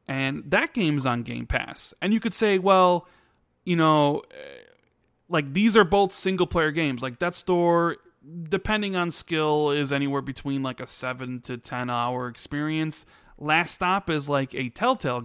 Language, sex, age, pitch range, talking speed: English, male, 30-49, 130-185 Hz, 155 wpm